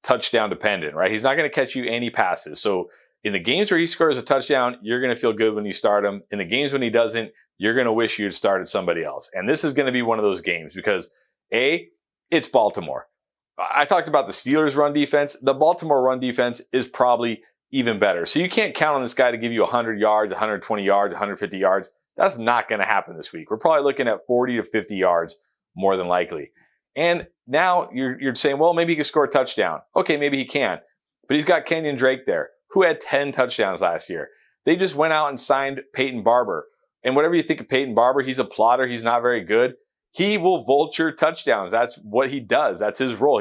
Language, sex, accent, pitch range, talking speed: English, male, American, 120-150 Hz, 230 wpm